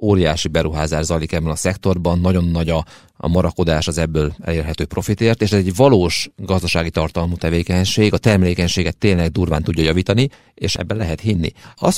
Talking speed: 165 wpm